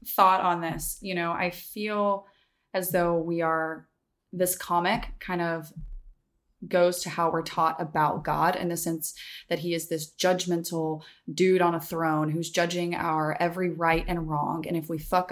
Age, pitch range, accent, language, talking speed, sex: 20-39, 165-185 Hz, American, English, 175 wpm, female